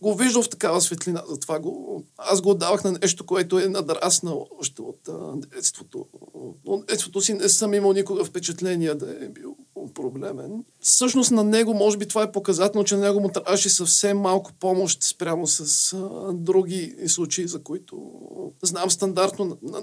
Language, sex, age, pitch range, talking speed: Bulgarian, male, 40-59, 180-205 Hz, 175 wpm